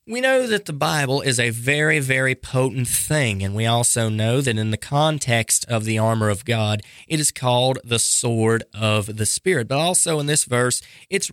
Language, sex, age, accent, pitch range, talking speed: English, male, 30-49, American, 115-160 Hz, 200 wpm